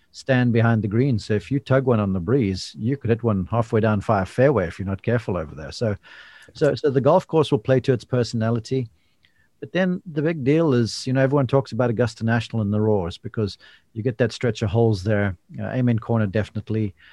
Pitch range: 105-125 Hz